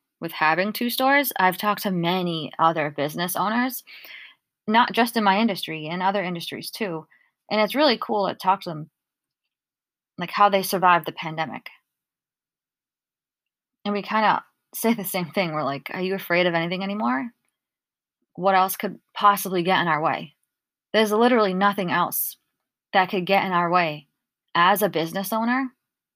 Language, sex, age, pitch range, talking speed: English, female, 20-39, 175-215 Hz, 165 wpm